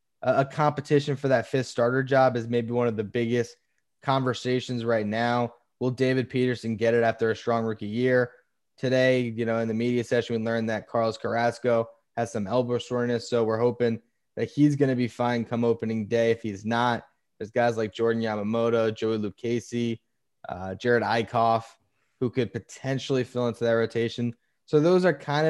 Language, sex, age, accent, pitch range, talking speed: English, male, 10-29, American, 115-130 Hz, 180 wpm